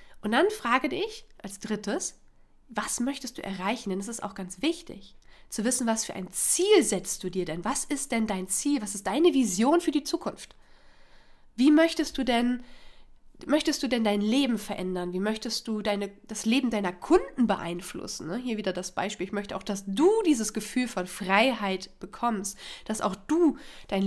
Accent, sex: German, female